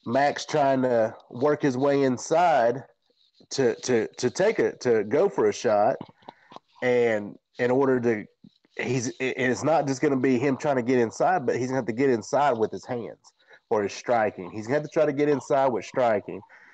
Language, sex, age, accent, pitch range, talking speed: English, male, 30-49, American, 110-135 Hz, 210 wpm